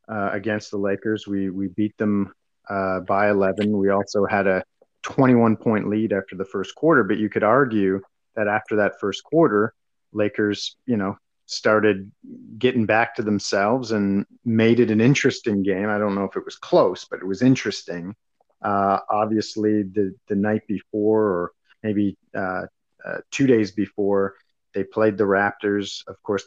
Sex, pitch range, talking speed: male, 100-110 Hz, 170 wpm